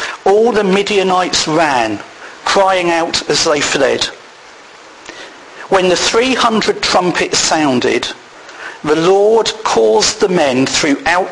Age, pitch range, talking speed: 50-69, 155-205 Hz, 105 wpm